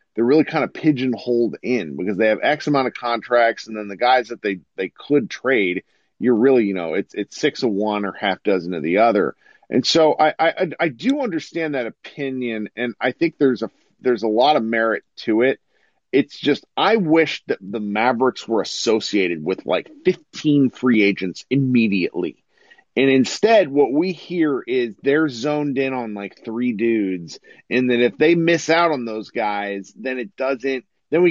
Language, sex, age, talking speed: English, male, 40-59, 195 wpm